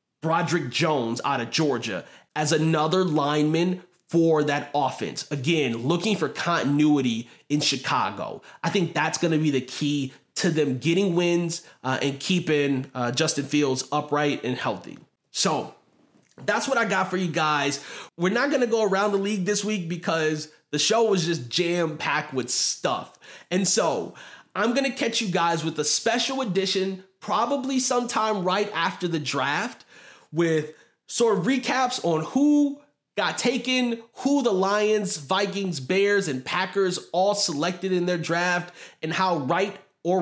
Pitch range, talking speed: 155-210 Hz, 160 wpm